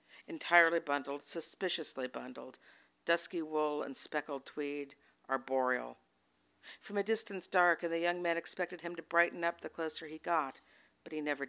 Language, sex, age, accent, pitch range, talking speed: English, female, 60-79, American, 115-175 Hz, 155 wpm